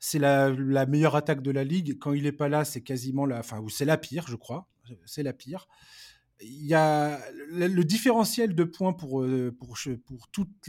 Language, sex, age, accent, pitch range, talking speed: French, male, 20-39, French, 130-165 Hz, 210 wpm